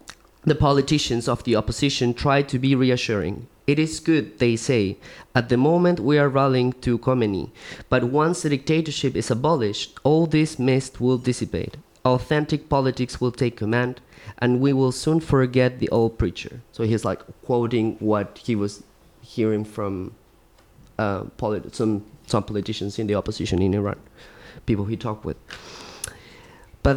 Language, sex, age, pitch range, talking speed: English, male, 20-39, 115-145 Hz, 155 wpm